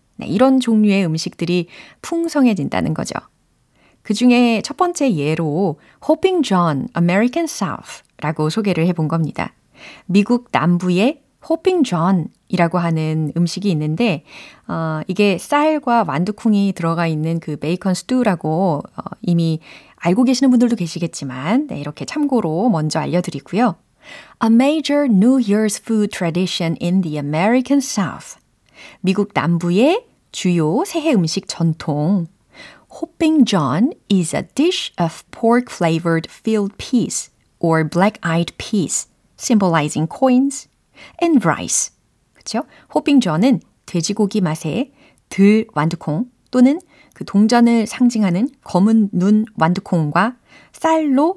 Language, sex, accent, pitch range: Korean, female, native, 170-255 Hz